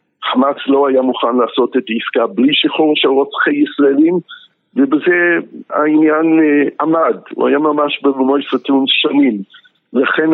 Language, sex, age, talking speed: Hebrew, male, 60-79, 120 wpm